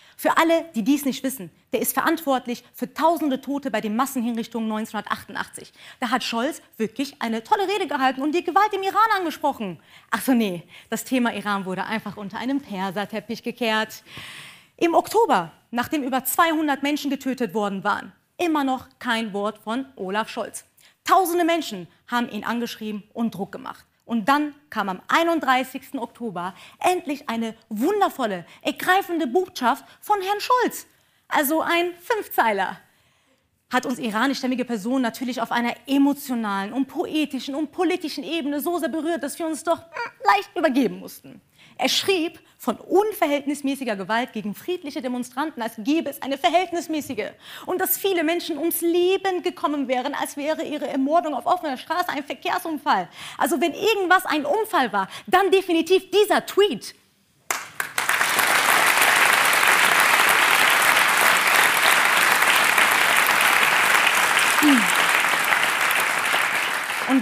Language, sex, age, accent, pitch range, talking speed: English, female, 30-49, German, 230-335 Hz, 130 wpm